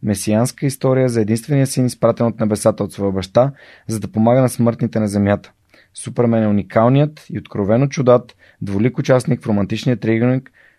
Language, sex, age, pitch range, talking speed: Bulgarian, male, 20-39, 105-130 Hz, 160 wpm